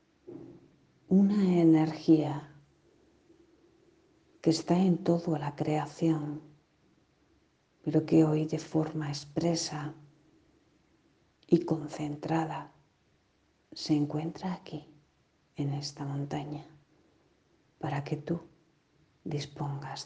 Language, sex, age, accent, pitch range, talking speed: Spanish, female, 50-69, Spanish, 150-175 Hz, 80 wpm